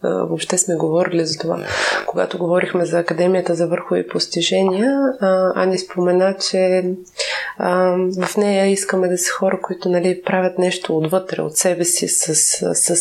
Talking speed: 150 wpm